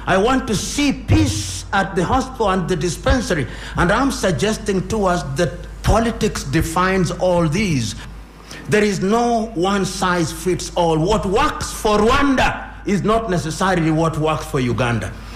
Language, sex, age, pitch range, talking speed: English, male, 60-79, 170-225 Hz, 140 wpm